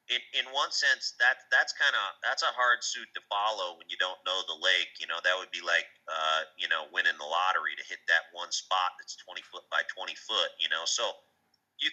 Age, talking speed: 30-49, 235 wpm